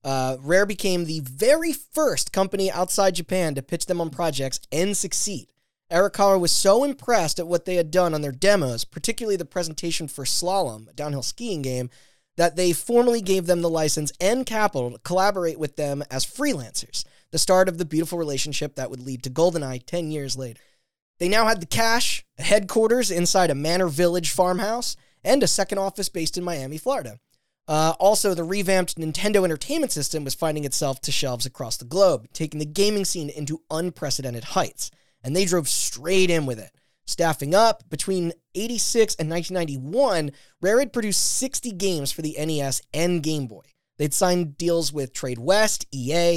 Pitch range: 150-190 Hz